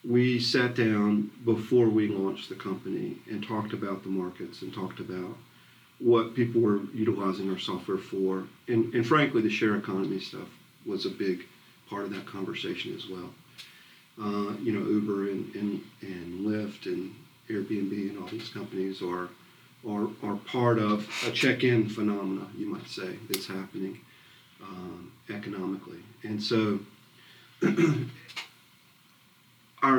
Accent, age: American, 40-59